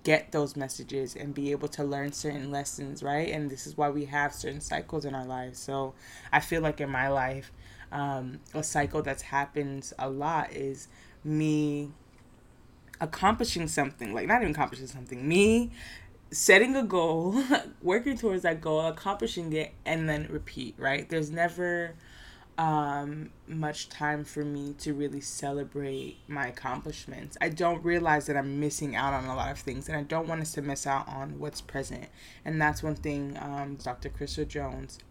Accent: American